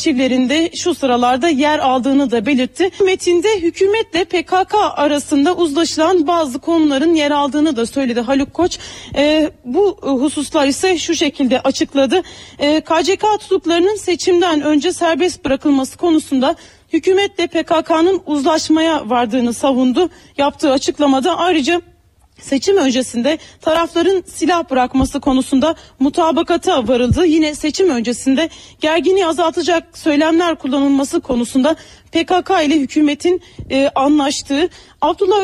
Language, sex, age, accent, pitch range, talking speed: Turkish, female, 30-49, native, 280-345 Hz, 110 wpm